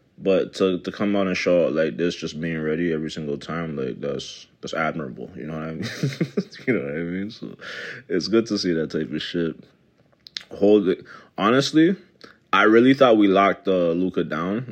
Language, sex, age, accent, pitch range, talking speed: English, male, 20-39, American, 80-110 Hz, 200 wpm